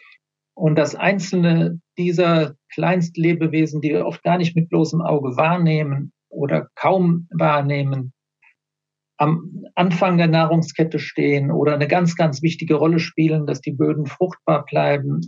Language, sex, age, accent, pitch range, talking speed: German, male, 50-69, German, 150-170 Hz, 135 wpm